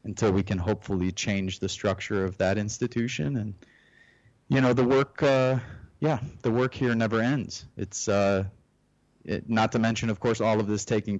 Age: 30-49